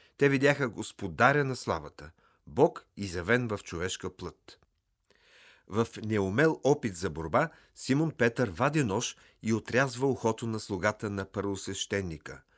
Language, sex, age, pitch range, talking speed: Bulgarian, male, 50-69, 95-130 Hz, 125 wpm